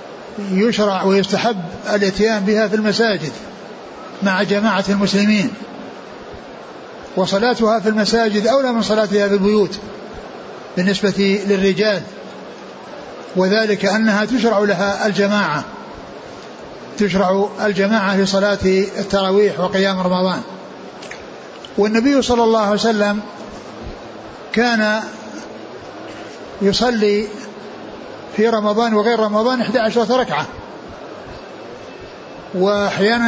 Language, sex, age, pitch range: Arabic, male, 60-79, 200-225 Hz